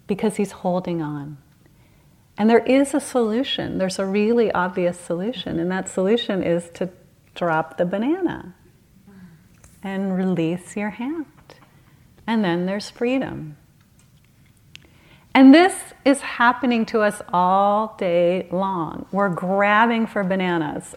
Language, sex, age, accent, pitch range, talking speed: English, female, 40-59, American, 175-235 Hz, 125 wpm